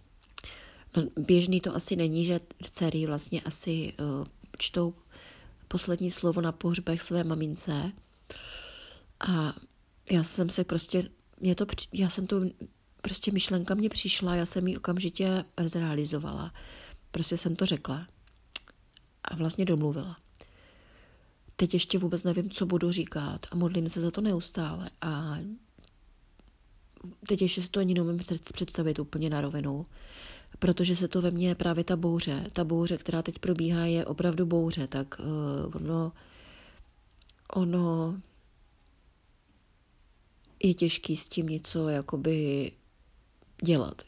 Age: 40-59